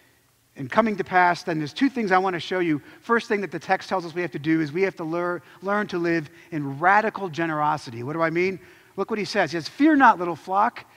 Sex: male